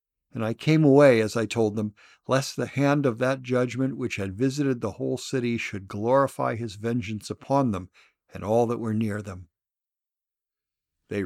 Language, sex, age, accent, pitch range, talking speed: English, male, 60-79, American, 105-135 Hz, 175 wpm